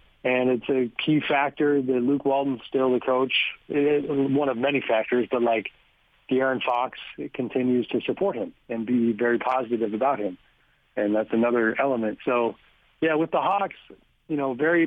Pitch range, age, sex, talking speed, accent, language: 125-145 Hz, 40-59, male, 170 wpm, American, English